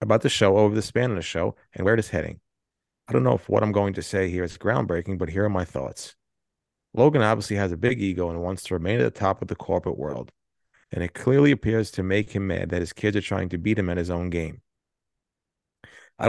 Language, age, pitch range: English, 30-49, 90-115 Hz